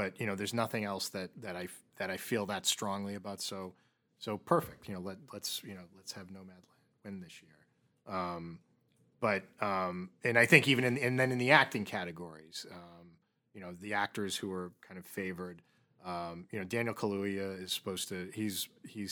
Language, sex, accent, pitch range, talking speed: English, male, American, 90-125 Hz, 200 wpm